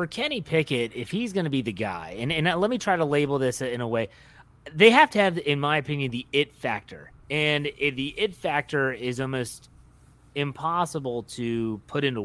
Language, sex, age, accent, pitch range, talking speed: English, male, 30-49, American, 125-155 Hz, 200 wpm